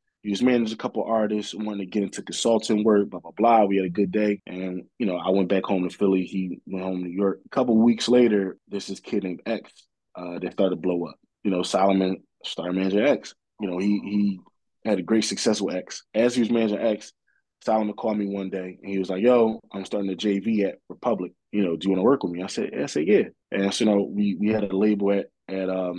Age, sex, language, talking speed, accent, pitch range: 20-39, male, English, 265 wpm, American, 95-105 Hz